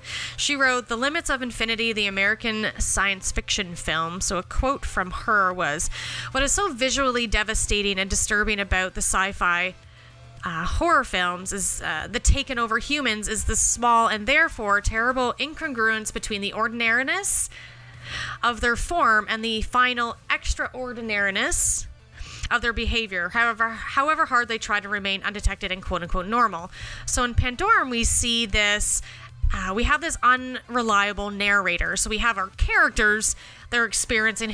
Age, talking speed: 30-49, 150 wpm